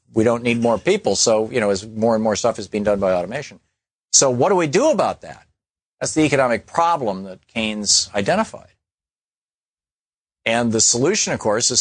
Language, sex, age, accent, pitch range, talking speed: English, male, 50-69, American, 95-120 Hz, 195 wpm